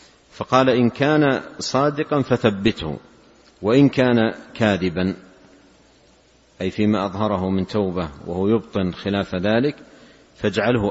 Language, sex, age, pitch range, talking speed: Arabic, male, 50-69, 95-110 Hz, 100 wpm